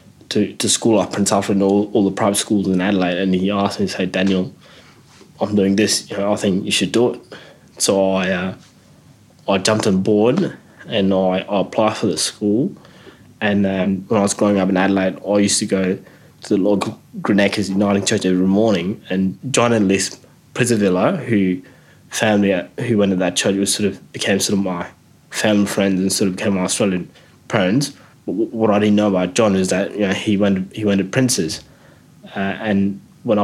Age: 20-39